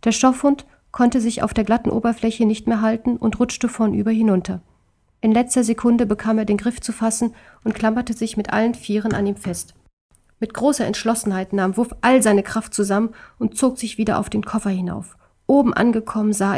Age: 40-59